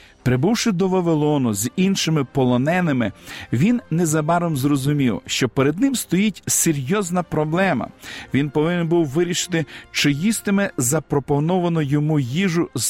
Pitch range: 145-180 Hz